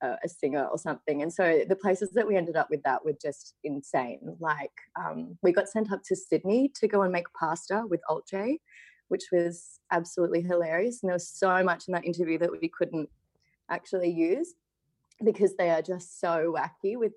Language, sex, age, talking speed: English, female, 20-39, 195 wpm